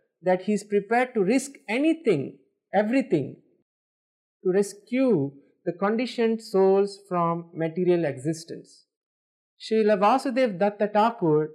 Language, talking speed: English, 105 wpm